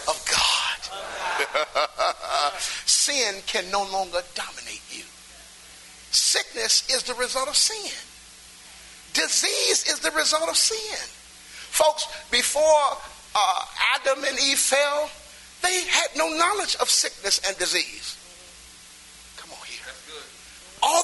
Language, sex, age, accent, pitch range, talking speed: English, male, 50-69, American, 230-325 Hz, 110 wpm